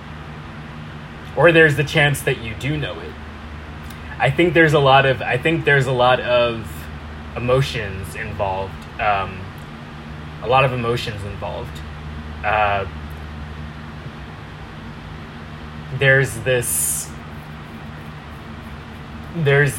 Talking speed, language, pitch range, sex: 100 wpm, English, 75-115 Hz, male